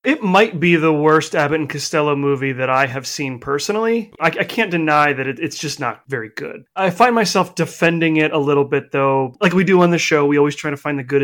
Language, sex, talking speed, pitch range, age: English, male, 245 wpm, 140-170 Hz, 30-49